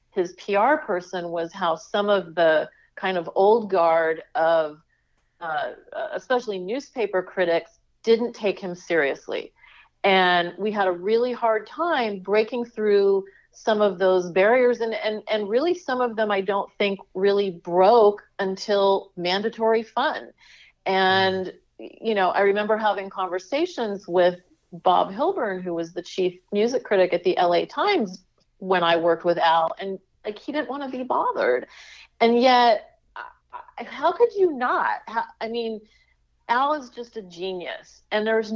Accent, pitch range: American, 175-230 Hz